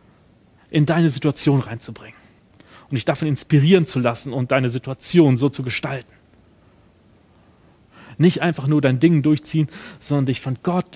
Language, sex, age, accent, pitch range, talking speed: German, male, 40-59, German, 120-160 Hz, 140 wpm